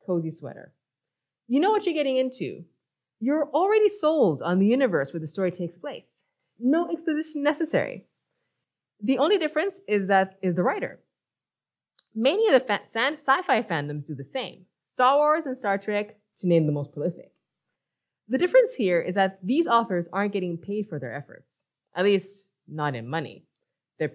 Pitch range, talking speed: 175-280 Hz, 165 wpm